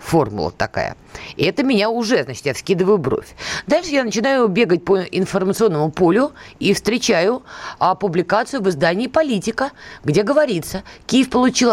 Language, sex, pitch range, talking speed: Russian, female, 175-255 Hz, 145 wpm